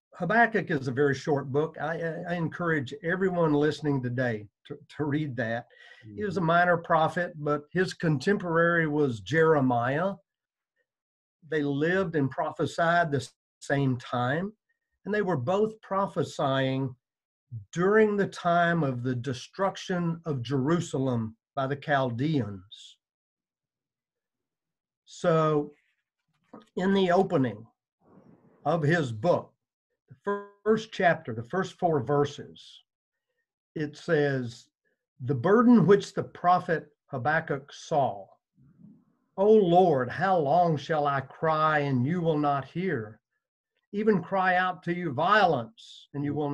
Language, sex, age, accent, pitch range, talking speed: English, male, 50-69, American, 140-185 Hz, 120 wpm